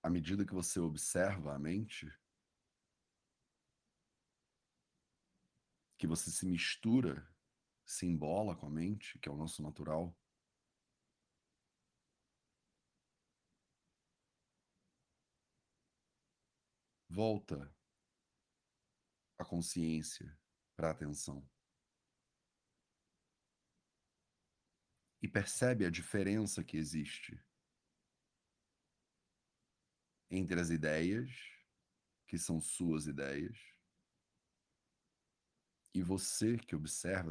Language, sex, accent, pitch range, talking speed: English, male, Brazilian, 75-95 Hz, 70 wpm